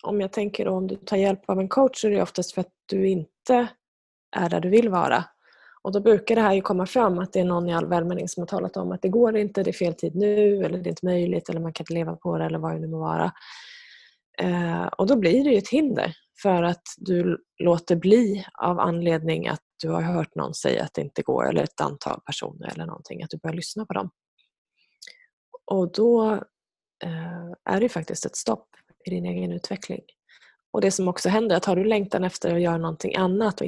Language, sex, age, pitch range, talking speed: Swedish, female, 20-39, 170-210 Hz, 235 wpm